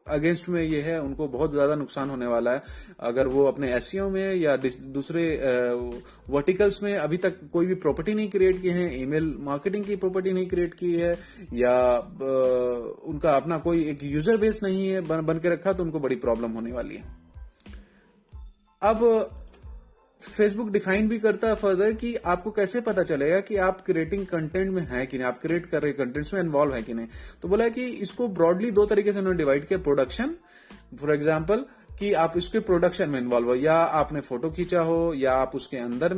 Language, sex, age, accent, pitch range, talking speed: Hindi, male, 30-49, native, 140-190 Hz, 190 wpm